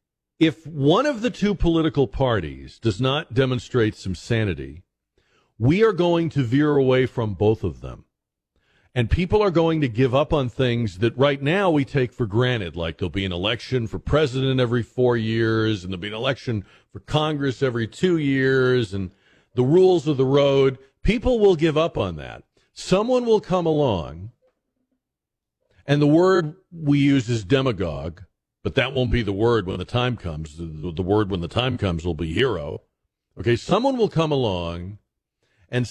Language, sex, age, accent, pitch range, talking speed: English, male, 50-69, American, 105-150 Hz, 180 wpm